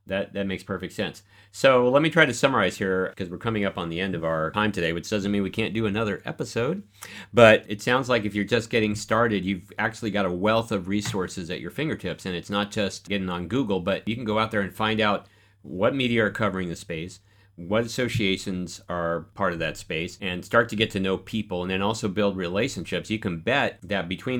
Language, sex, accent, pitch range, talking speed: English, male, American, 90-105 Hz, 235 wpm